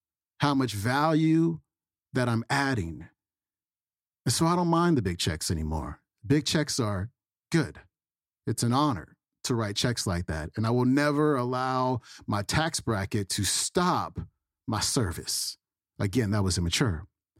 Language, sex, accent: English, male, American